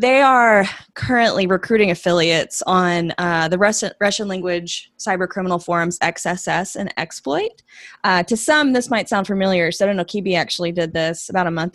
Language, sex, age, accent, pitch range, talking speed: English, female, 20-39, American, 175-220 Hz, 175 wpm